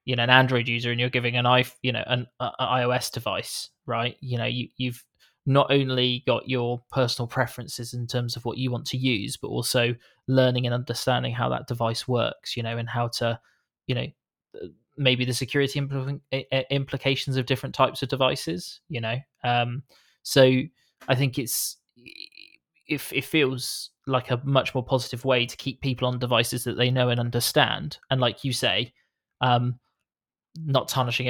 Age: 20-39